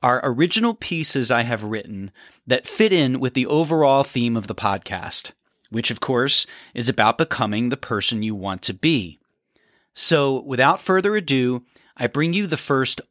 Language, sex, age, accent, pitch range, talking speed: English, male, 30-49, American, 110-170 Hz, 170 wpm